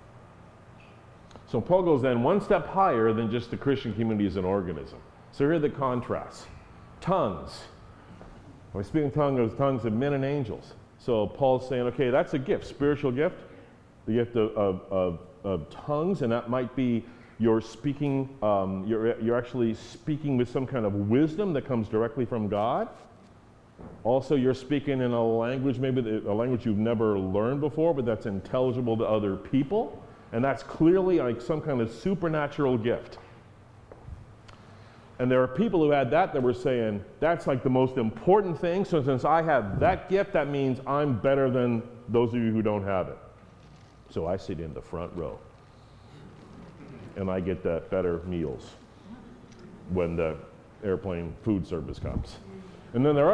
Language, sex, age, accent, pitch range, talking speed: English, male, 40-59, American, 110-140 Hz, 170 wpm